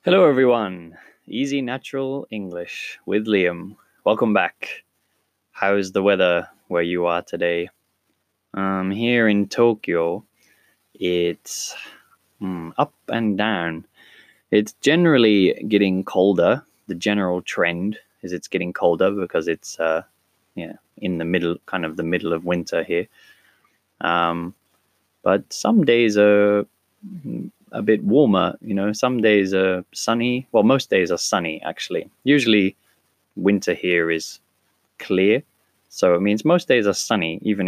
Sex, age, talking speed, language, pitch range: male, 20-39, 130 wpm, English, 85-105 Hz